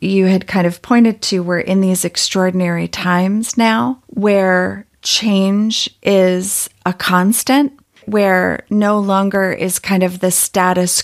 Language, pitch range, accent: English, 185-210 Hz, American